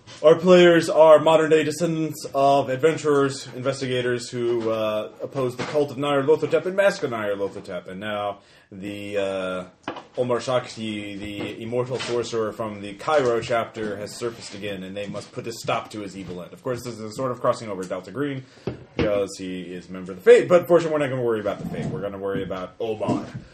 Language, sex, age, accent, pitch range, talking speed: English, male, 30-49, American, 95-120 Hz, 210 wpm